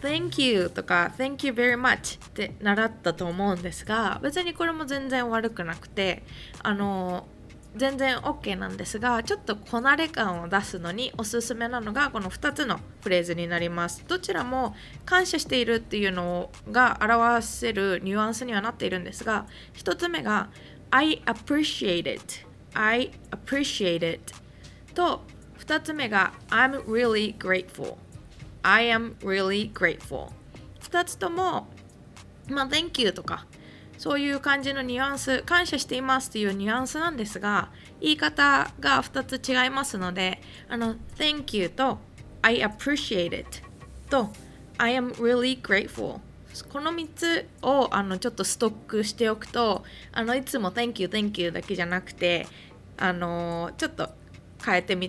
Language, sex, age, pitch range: Japanese, female, 20-39, 190-270 Hz